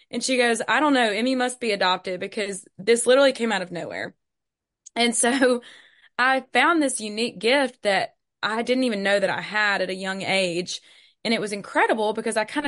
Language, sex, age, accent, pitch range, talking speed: English, female, 20-39, American, 195-240 Hz, 205 wpm